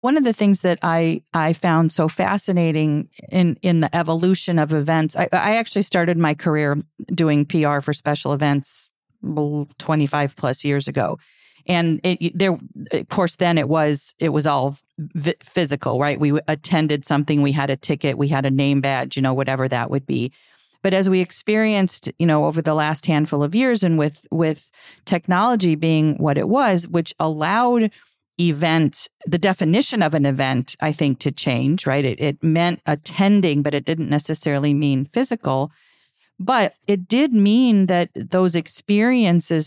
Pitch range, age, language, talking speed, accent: 145-175 Hz, 40-59, English, 170 wpm, American